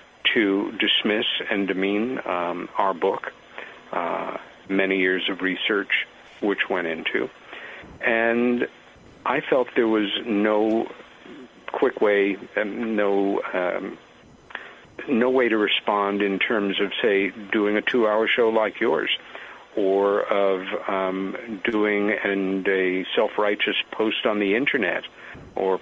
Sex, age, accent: male, 50-69, American